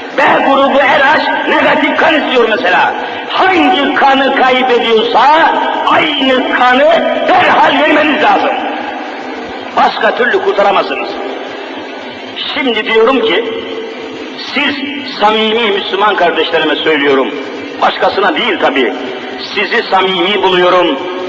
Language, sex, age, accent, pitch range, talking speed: Turkish, male, 50-69, native, 220-310 Hz, 95 wpm